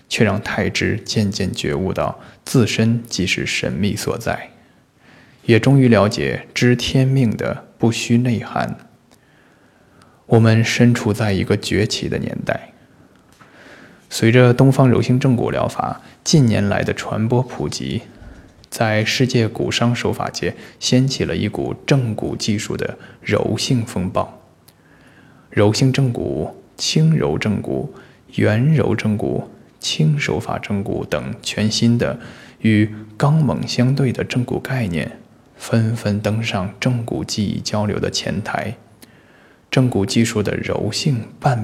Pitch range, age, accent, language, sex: 105-125 Hz, 20-39, native, Chinese, male